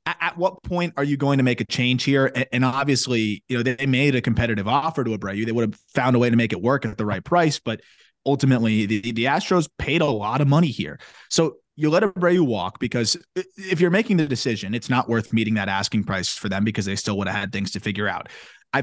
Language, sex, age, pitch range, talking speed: English, male, 30-49, 110-135 Hz, 250 wpm